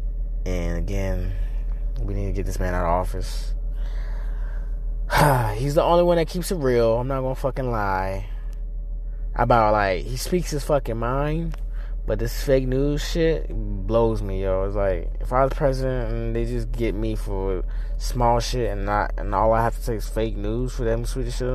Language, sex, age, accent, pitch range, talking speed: English, male, 20-39, American, 105-140 Hz, 195 wpm